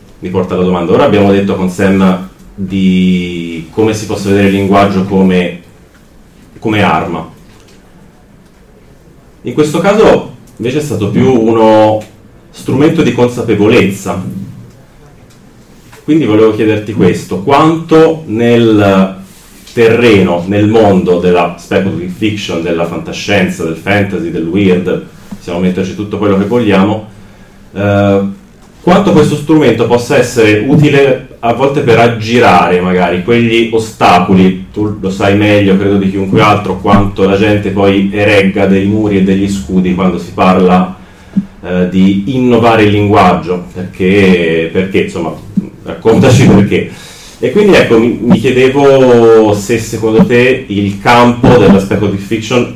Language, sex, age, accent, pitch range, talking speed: Italian, male, 30-49, native, 95-115 Hz, 125 wpm